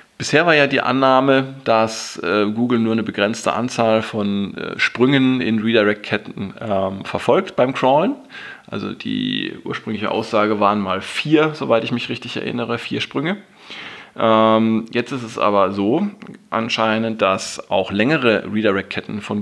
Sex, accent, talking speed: male, German, 140 wpm